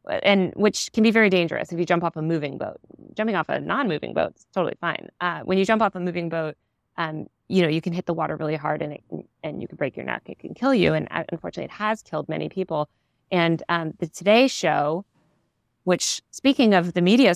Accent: American